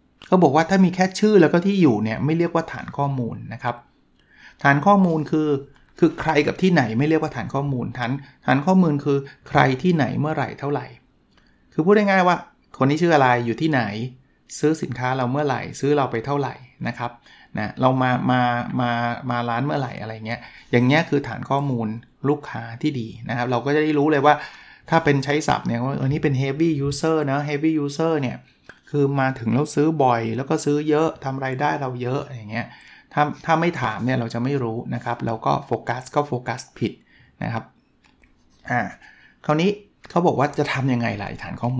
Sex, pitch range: male, 125-150 Hz